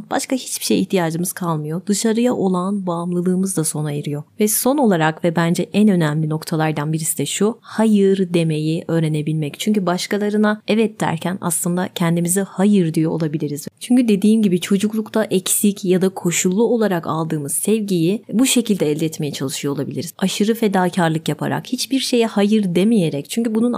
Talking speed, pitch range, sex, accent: 150 wpm, 170-220 Hz, female, native